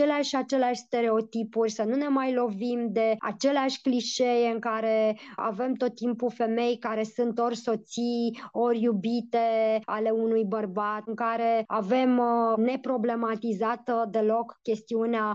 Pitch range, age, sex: 225-270 Hz, 20-39, male